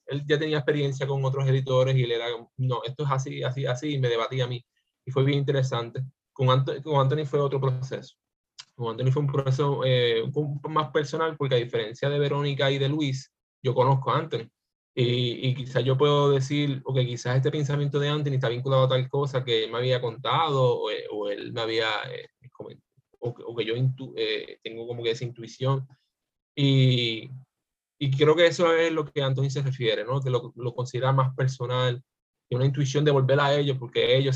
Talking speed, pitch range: 215 wpm, 125-145 Hz